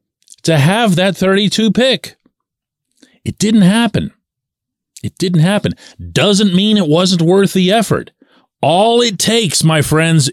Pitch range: 135-220 Hz